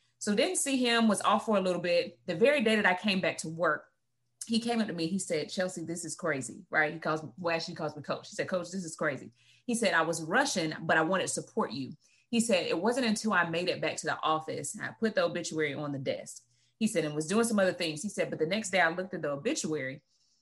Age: 30-49